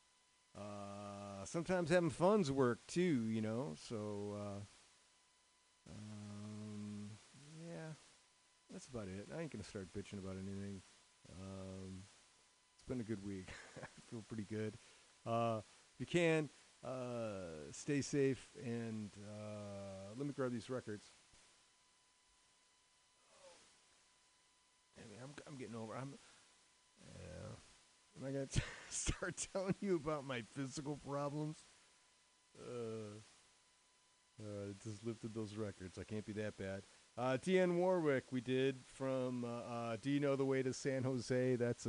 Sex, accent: male, American